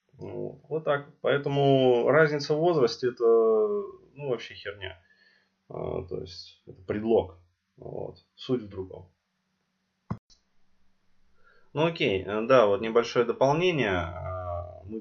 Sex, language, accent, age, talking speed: male, Russian, native, 20-39, 105 wpm